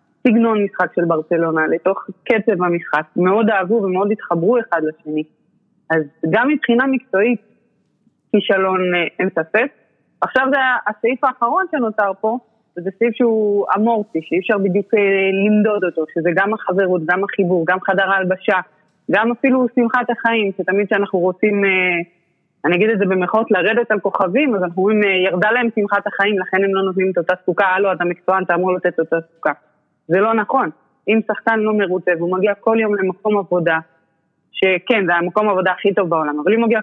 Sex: female